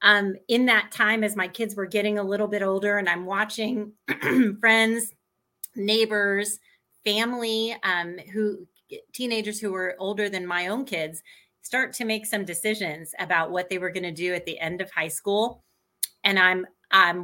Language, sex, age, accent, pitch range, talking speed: English, female, 30-49, American, 195-240 Hz, 175 wpm